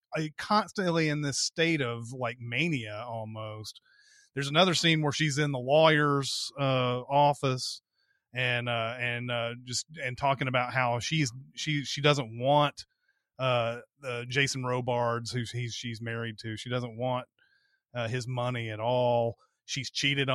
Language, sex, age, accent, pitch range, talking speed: English, male, 30-49, American, 120-150 Hz, 145 wpm